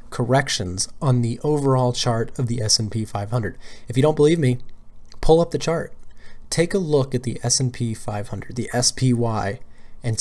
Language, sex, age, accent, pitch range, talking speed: English, male, 20-39, American, 115-145 Hz, 165 wpm